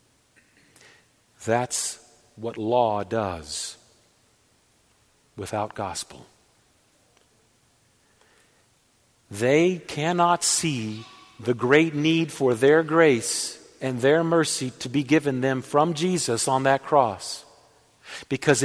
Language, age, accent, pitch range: English, 50-69, American, 120-155 Hz